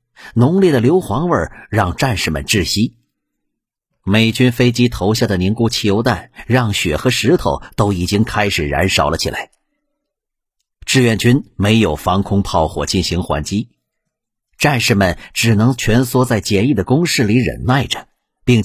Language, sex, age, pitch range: Chinese, male, 50-69, 100-130 Hz